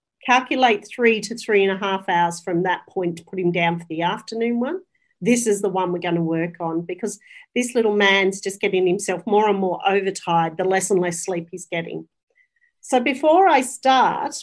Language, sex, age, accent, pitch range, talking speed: English, female, 40-59, Australian, 190-240 Hz, 210 wpm